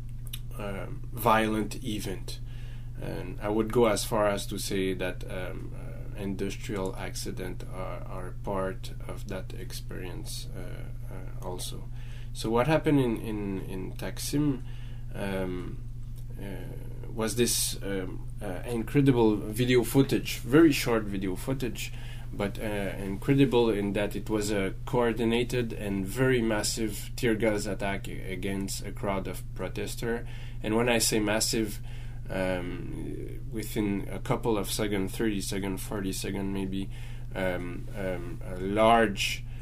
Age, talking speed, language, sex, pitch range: 20-39, 130 wpm, English, male, 100-120 Hz